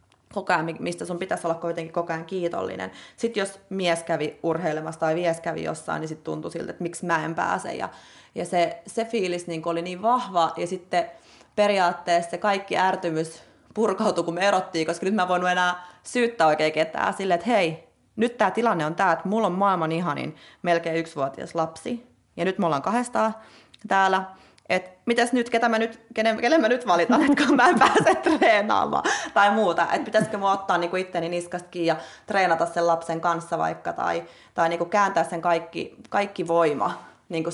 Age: 30-49